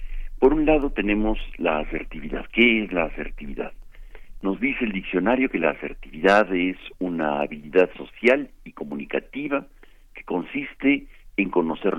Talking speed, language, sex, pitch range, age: 135 wpm, Spanish, male, 85-130 Hz, 60-79